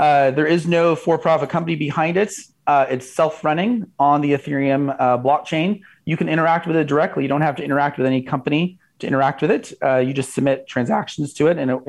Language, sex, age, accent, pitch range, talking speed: English, male, 30-49, American, 130-165 Hz, 215 wpm